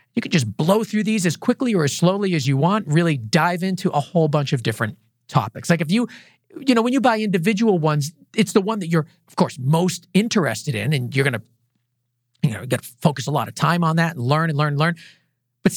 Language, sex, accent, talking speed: English, male, American, 245 wpm